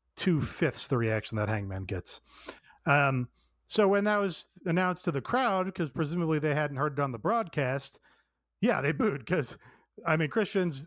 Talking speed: 170 wpm